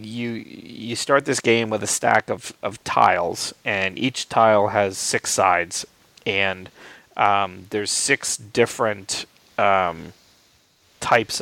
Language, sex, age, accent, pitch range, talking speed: English, male, 30-49, American, 100-120 Hz, 125 wpm